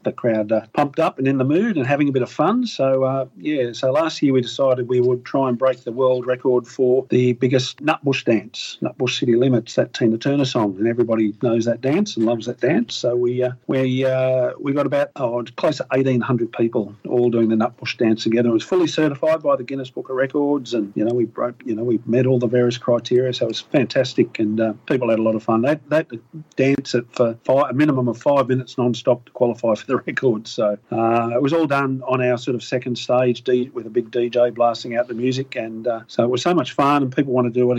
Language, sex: English, male